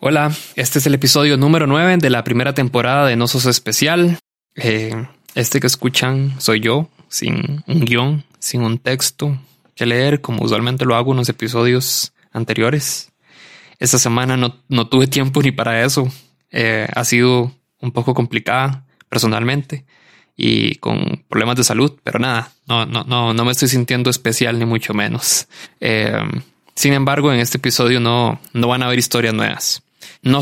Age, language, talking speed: 20-39, Spanish, 170 wpm